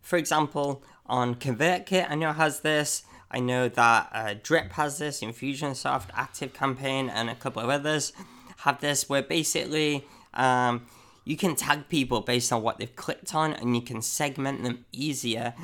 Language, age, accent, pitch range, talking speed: English, 10-29, British, 120-155 Hz, 170 wpm